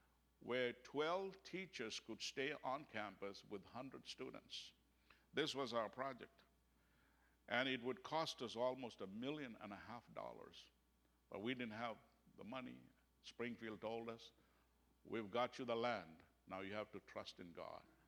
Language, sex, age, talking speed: English, male, 60-79, 155 wpm